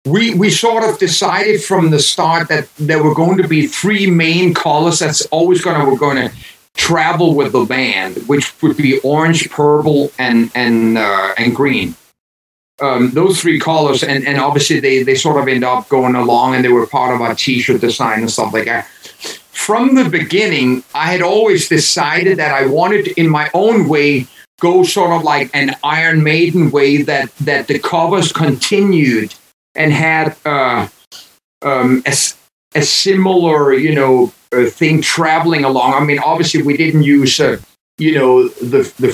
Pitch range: 125-160 Hz